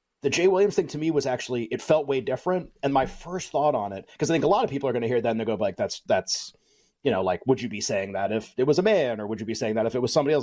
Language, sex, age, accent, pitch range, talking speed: English, male, 30-49, American, 120-155 Hz, 345 wpm